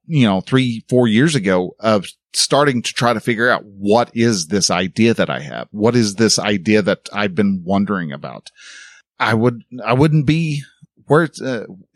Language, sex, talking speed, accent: English, male, 180 wpm, American